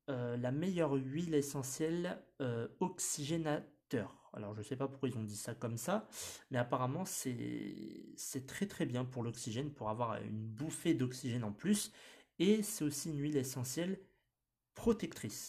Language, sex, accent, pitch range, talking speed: French, male, French, 110-145 Hz, 165 wpm